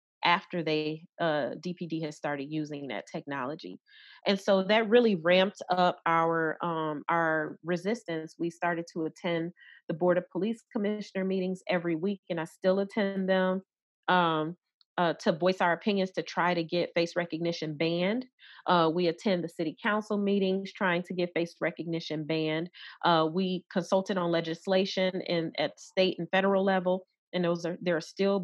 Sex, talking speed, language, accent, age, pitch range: female, 165 wpm, English, American, 30-49, 165-190 Hz